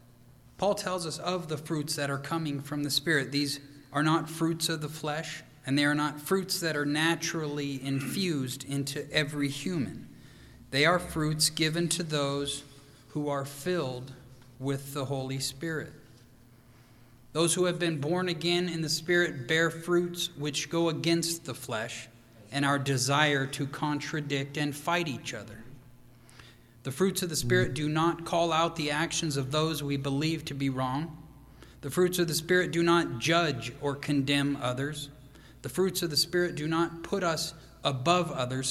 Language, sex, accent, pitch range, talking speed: English, male, American, 135-165 Hz, 170 wpm